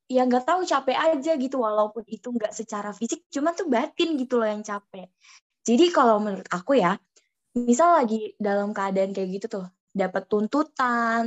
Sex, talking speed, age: female, 170 wpm, 20-39